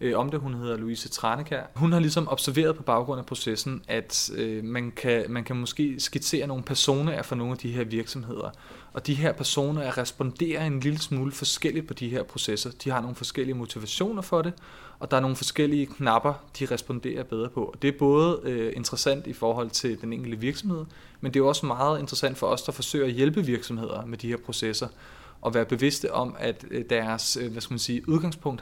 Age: 30-49